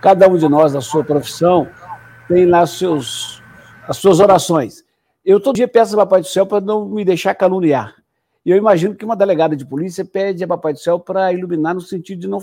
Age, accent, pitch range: 60-79, Brazilian, 165-210 Hz